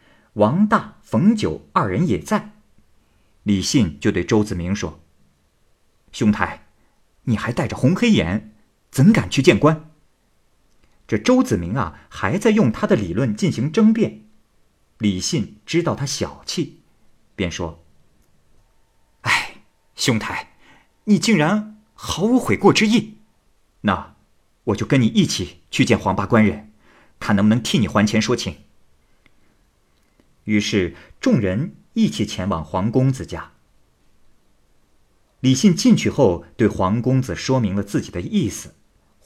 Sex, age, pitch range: male, 50-69, 80-130 Hz